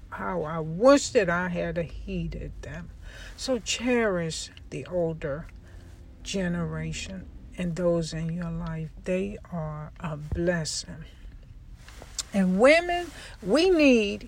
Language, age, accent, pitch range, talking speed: English, 60-79, American, 155-210 Hz, 110 wpm